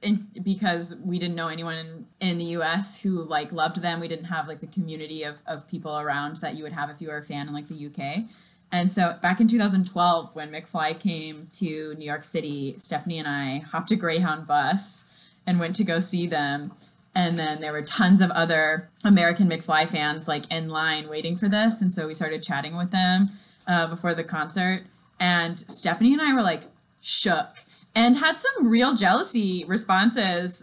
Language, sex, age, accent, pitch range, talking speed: English, female, 20-39, American, 165-235 Hz, 200 wpm